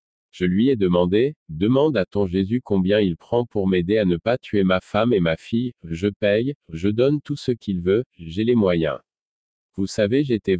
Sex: male